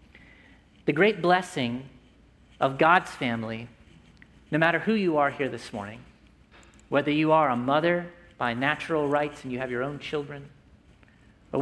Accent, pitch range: American, 120-155 Hz